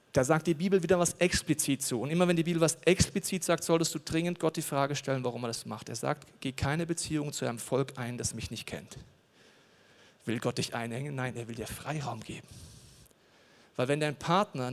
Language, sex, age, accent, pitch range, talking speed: German, male, 40-59, German, 135-185 Hz, 220 wpm